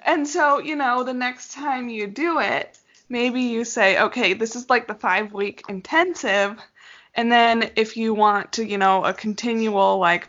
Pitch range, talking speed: 185-225 Hz, 180 wpm